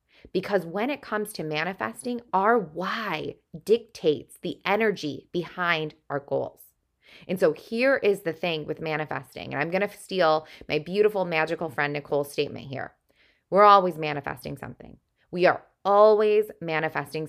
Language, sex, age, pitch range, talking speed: English, female, 20-39, 155-215 Hz, 145 wpm